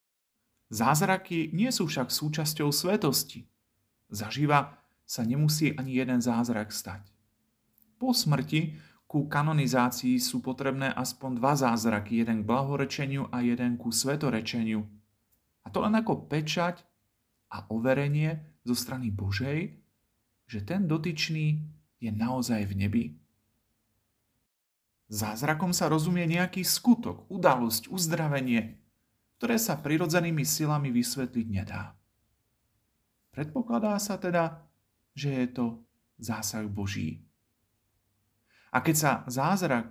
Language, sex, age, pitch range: Slovak, male, 40-59, 110-150 Hz